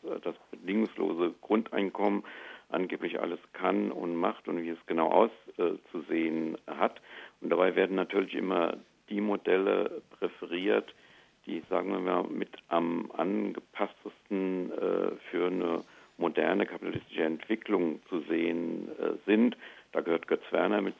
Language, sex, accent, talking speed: German, male, German, 130 wpm